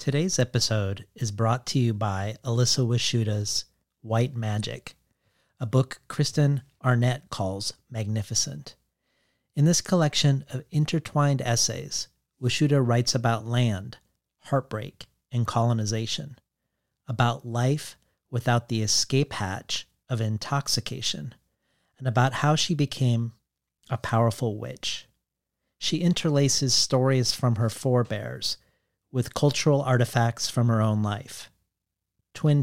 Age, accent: 40-59, American